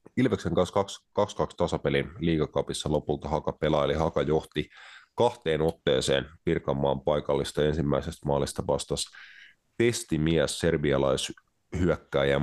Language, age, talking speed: Finnish, 30-49, 95 wpm